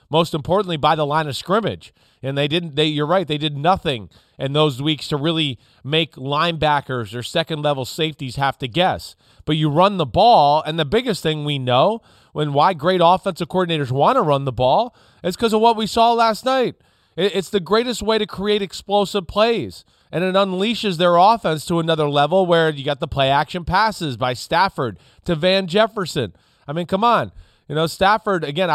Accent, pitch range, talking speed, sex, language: American, 140-185 Hz, 200 wpm, male, English